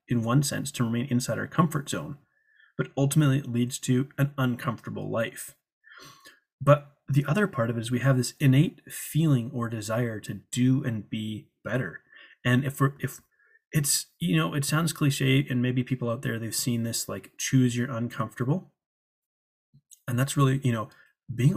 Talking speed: 180 wpm